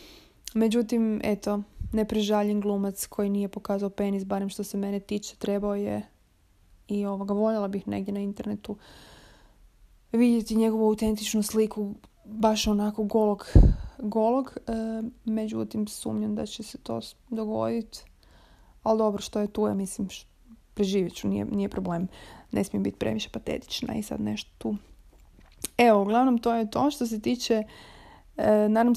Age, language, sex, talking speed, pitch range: 20-39, Croatian, female, 145 wpm, 195-220 Hz